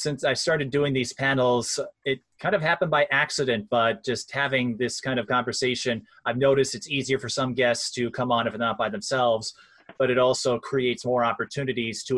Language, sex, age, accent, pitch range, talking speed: English, male, 30-49, American, 115-140 Hz, 195 wpm